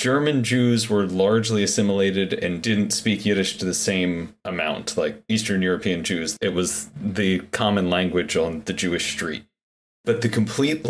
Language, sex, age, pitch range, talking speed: English, male, 30-49, 90-110 Hz, 160 wpm